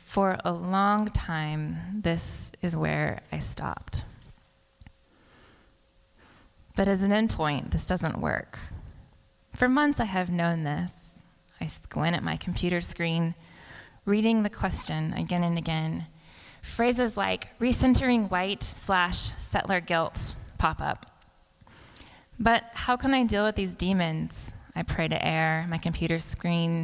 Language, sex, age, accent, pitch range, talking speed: English, female, 20-39, American, 160-195 Hz, 130 wpm